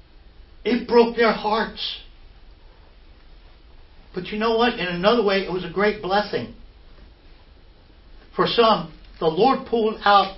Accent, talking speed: American, 125 wpm